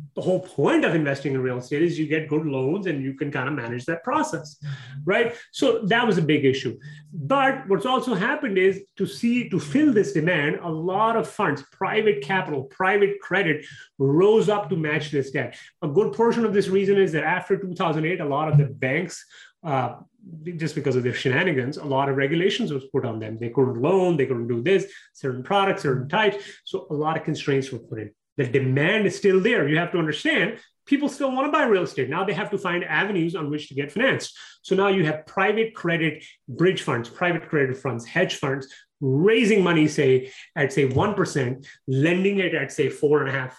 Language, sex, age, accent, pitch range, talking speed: English, male, 30-49, Indian, 140-195 Hz, 215 wpm